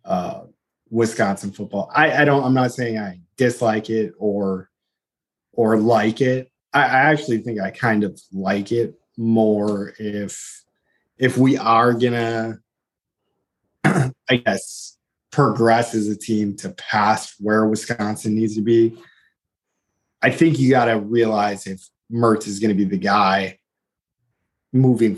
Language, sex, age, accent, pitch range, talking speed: English, male, 20-39, American, 100-120 Hz, 135 wpm